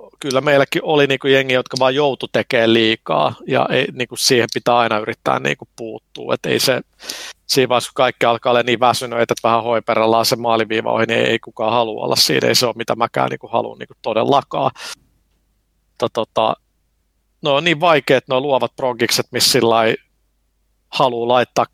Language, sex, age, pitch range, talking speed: Finnish, male, 50-69, 110-125 Hz, 175 wpm